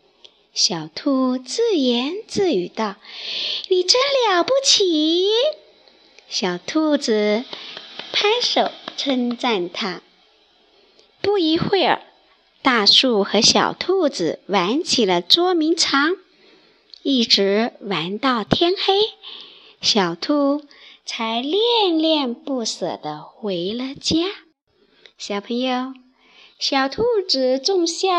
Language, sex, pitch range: Chinese, male, 235-375 Hz